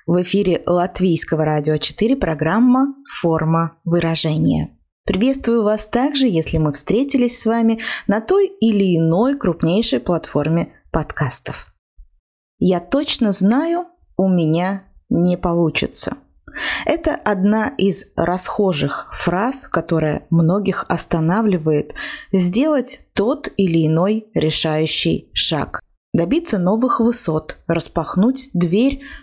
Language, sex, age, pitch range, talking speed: Russian, female, 20-39, 170-240 Hz, 100 wpm